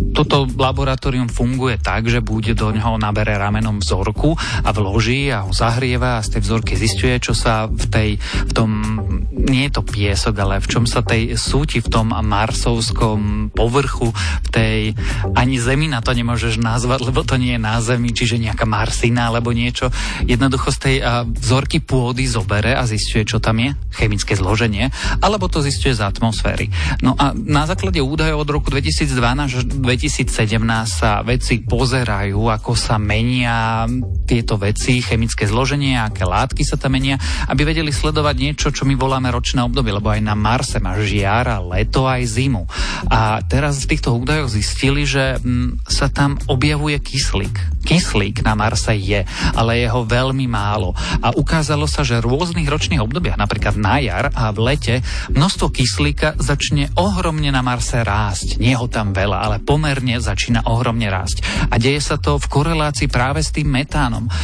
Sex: male